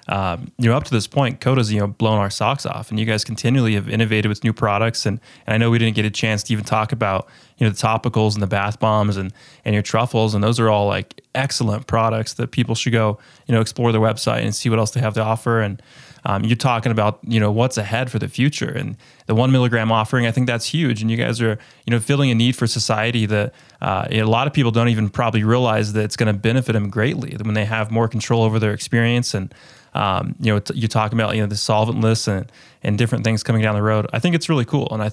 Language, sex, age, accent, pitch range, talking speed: English, male, 20-39, American, 110-125 Hz, 265 wpm